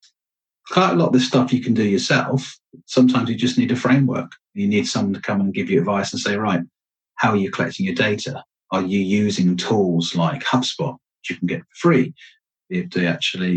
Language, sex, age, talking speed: English, male, 40-59, 215 wpm